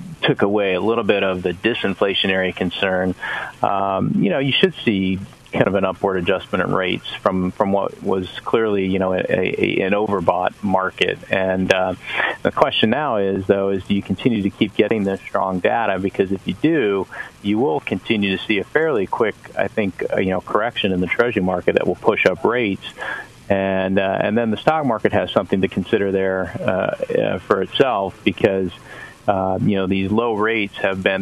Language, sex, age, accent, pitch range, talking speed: English, male, 40-59, American, 95-105 Hz, 200 wpm